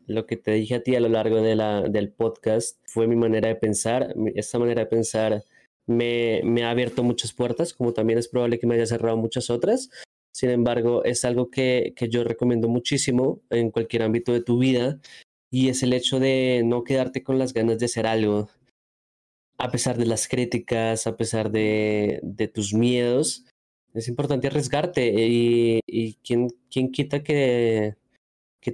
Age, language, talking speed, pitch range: 20-39, Spanish, 180 wpm, 115-135 Hz